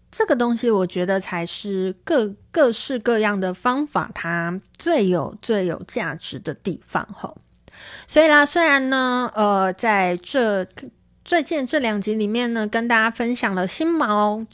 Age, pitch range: 20-39, 185-240 Hz